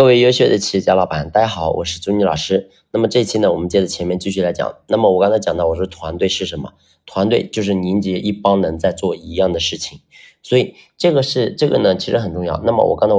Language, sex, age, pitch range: Chinese, male, 30-49, 90-110 Hz